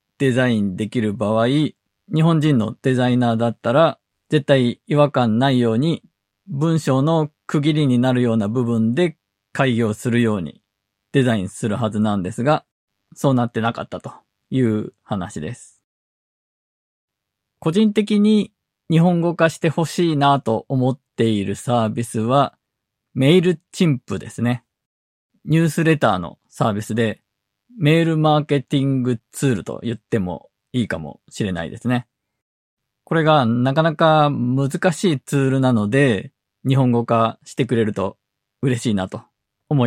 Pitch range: 115-150 Hz